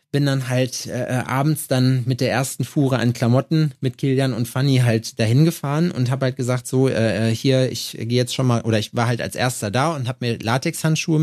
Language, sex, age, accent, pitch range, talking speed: German, male, 30-49, German, 125-160 Hz, 225 wpm